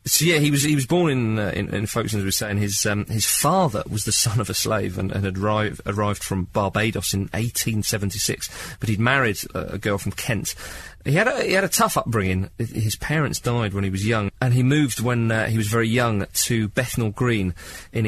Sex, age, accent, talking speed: male, 30-49, British, 235 wpm